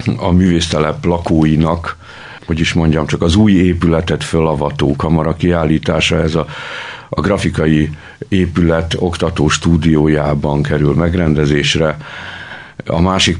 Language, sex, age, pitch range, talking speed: Hungarian, male, 60-79, 75-85 Hz, 105 wpm